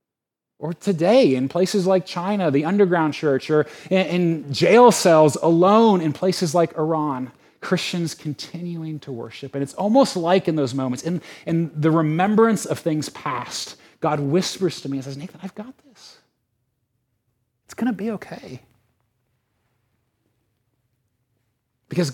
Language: English